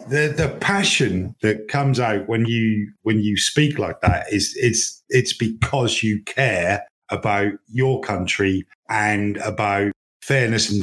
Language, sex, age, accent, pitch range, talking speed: English, male, 50-69, British, 110-140 Hz, 145 wpm